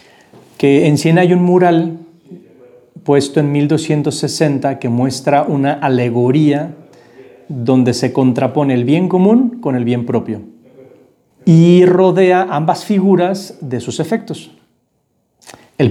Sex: male